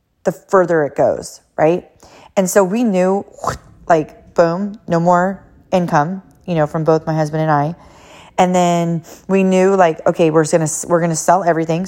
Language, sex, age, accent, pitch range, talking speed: English, female, 30-49, American, 165-210 Hz, 180 wpm